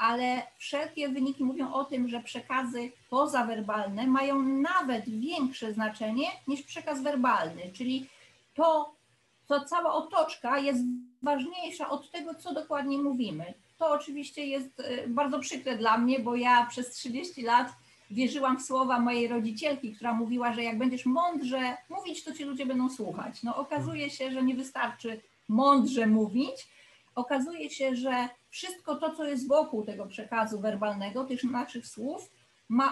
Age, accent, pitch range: 40-59, native, 245-295 Hz